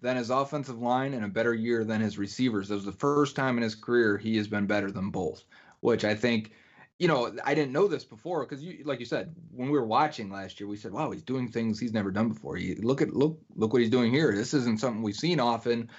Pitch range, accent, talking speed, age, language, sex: 110-145 Hz, American, 265 wpm, 30-49, English, male